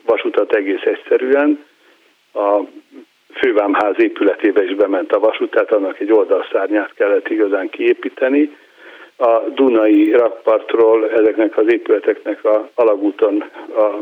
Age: 60-79